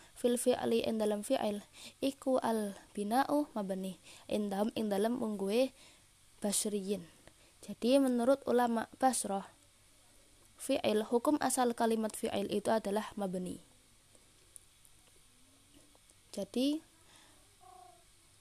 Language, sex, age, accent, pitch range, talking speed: Indonesian, female, 20-39, native, 210-255 Hz, 75 wpm